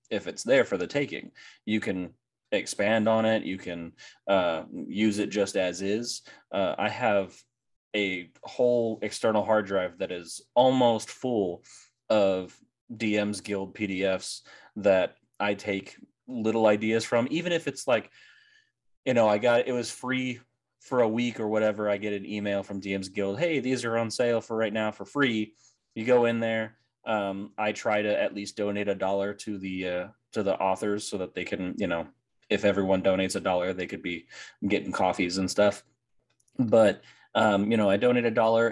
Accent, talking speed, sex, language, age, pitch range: American, 185 wpm, male, English, 30-49, 100-120 Hz